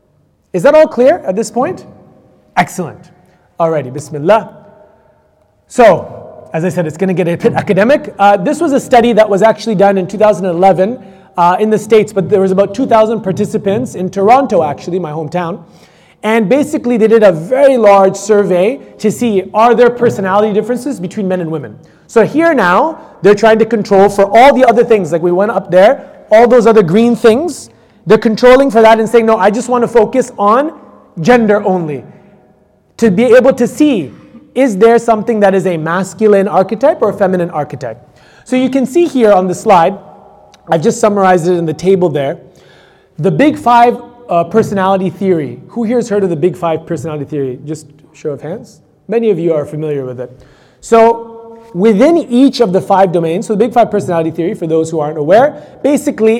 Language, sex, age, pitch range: English, male, 30-49, 180-235 Hz